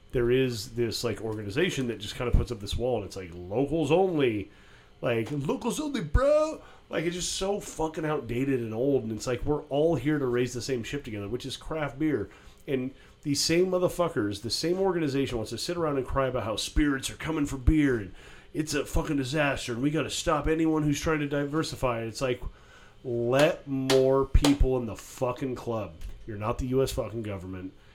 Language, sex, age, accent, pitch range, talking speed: English, male, 30-49, American, 110-145 Hz, 210 wpm